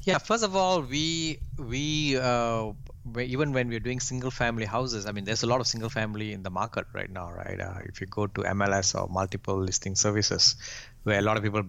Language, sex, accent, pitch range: English, male, Indian, 100-125 Hz